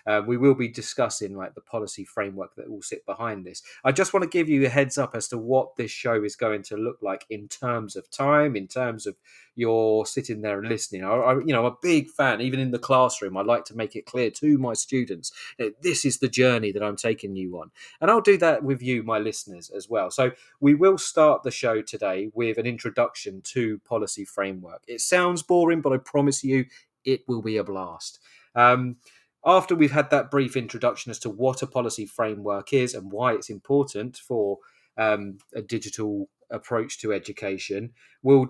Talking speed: 215 wpm